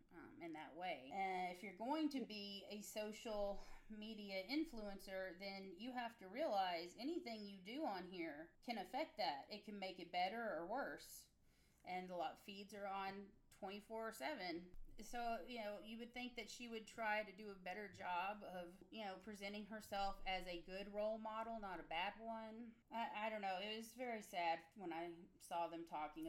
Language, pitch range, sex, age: English, 185-235 Hz, female, 30-49